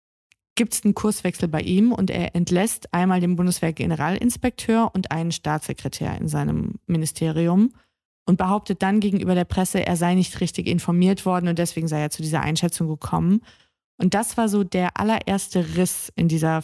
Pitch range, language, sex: 170-205 Hz, German, female